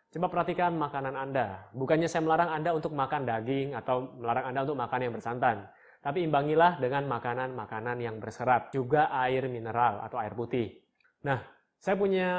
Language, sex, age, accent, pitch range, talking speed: Indonesian, male, 20-39, native, 120-170 Hz, 160 wpm